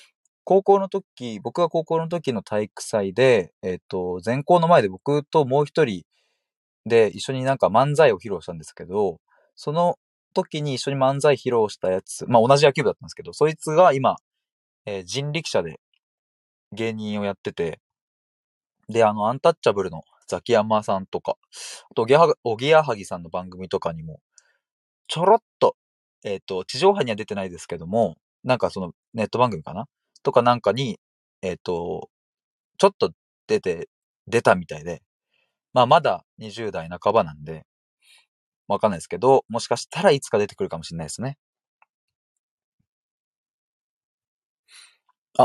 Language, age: Japanese, 20-39